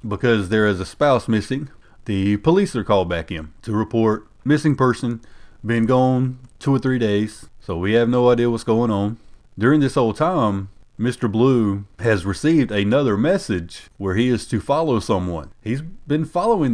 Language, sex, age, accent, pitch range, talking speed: English, male, 30-49, American, 95-120 Hz, 175 wpm